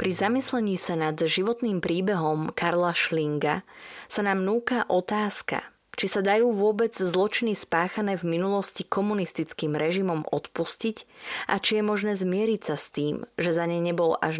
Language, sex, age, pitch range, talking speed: Slovak, female, 20-39, 155-200 Hz, 150 wpm